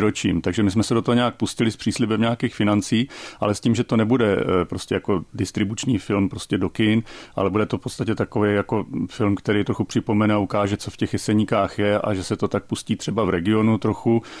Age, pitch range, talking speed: 40-59, 100-120 Hz, 225 wpm